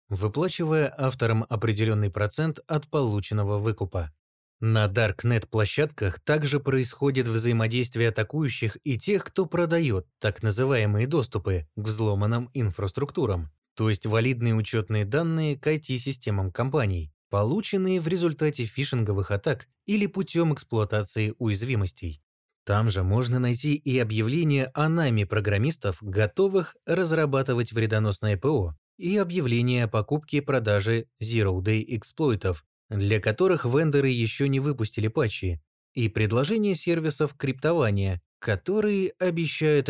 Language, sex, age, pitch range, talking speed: Russian, male, 20-39, 105-145 Hz, 110 wpm